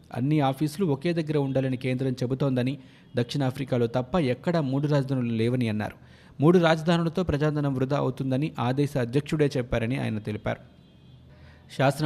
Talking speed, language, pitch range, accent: 125 wpm, Telugu, 125-150 Hz, native